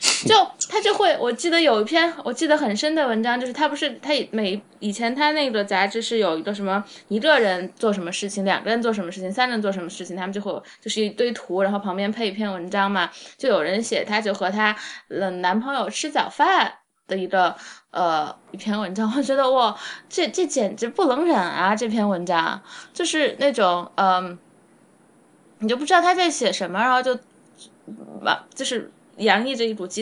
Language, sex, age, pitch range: Chinese, female, 20-39, 195-250 Hz